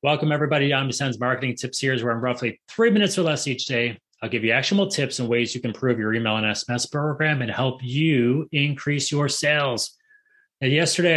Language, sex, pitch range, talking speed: English, male, 110-150 Hz, 210 wpm